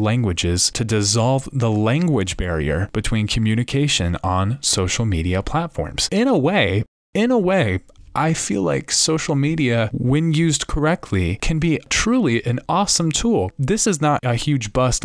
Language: English